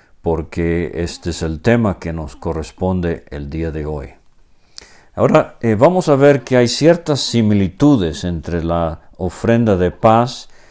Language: Spanish